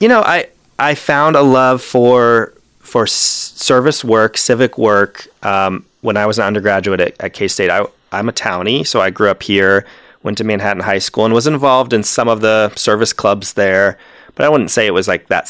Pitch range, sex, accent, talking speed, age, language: 100-130 Hz, male, American, 210 wpm, 30-49, English